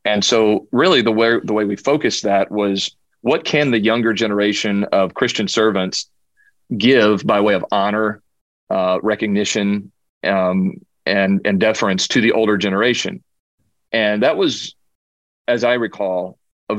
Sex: male